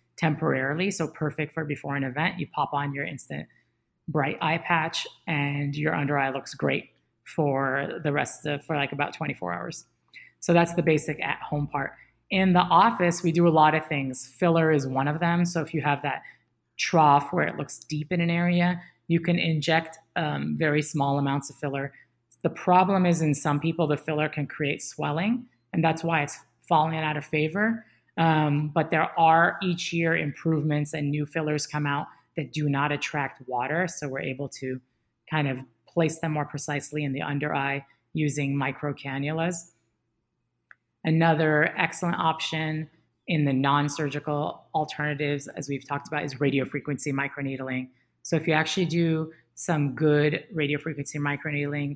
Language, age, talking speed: English, 30-49, 175 wpm